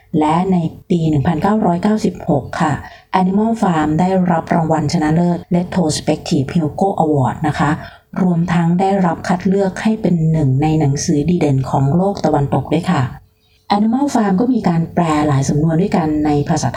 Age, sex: 30-49, female